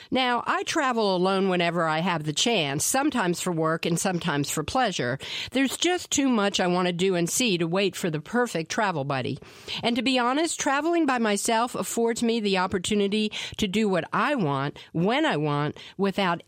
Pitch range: 175-245 Hz